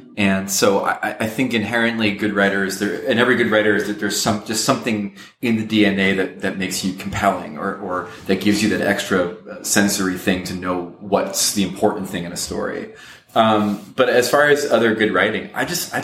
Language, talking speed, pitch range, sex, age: English, 210 wpm, 95-110 Hz, male, 30-49